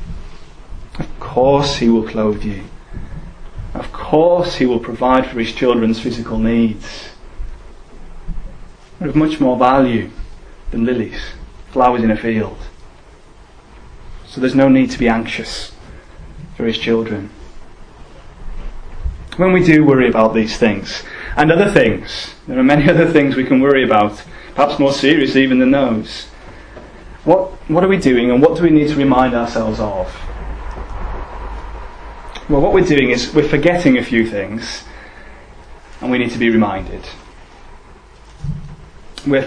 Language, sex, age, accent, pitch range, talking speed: English, male, 30-49, British, 110-145 Hz, 140 wpm